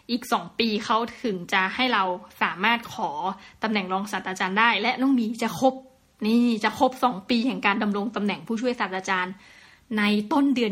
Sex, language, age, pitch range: female, Thai, 20-39, 205-245 Hz